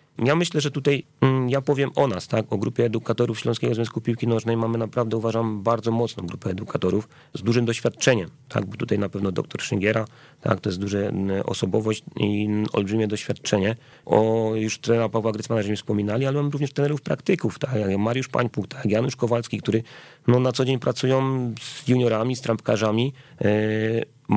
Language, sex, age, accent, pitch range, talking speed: Polish, male, 30-49, native, 105-125 Hz, 170 wpm